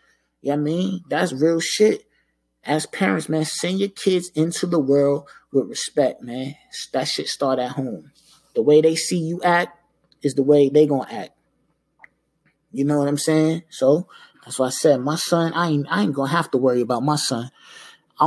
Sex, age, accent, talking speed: male, 20-39, American, 205 wpm